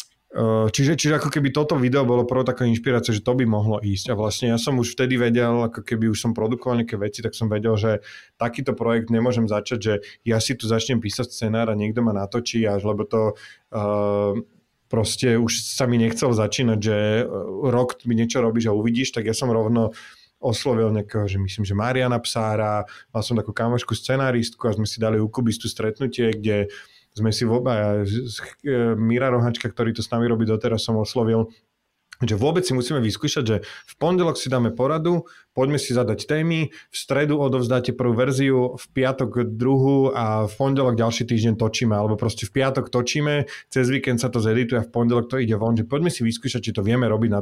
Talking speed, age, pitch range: 200 wpm, 30-49, 110-125 Hz